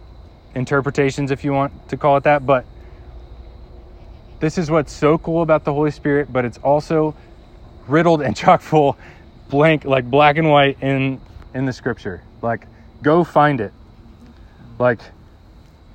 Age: 30-49